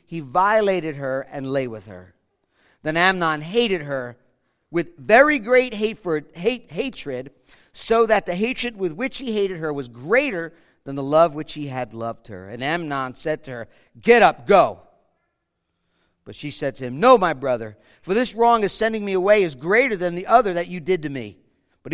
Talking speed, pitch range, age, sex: 185 wpm, 135-205 Hz, 50-69, male